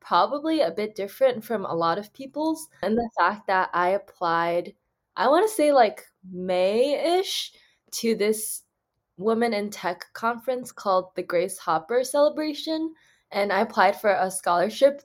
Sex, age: female, 20-39